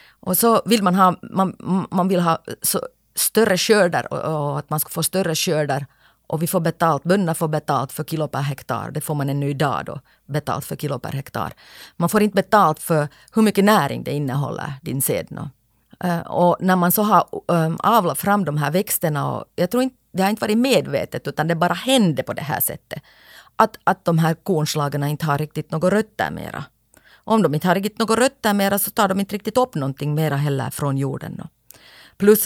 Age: 30-49